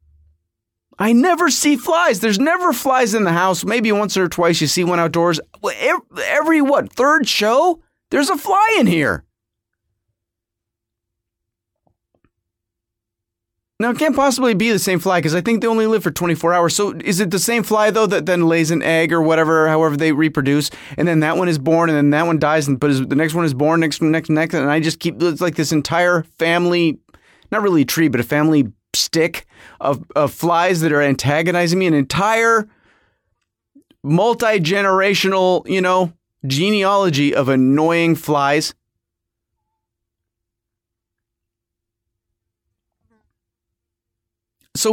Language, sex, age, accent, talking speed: English, male, 30-49, American, 155 wpm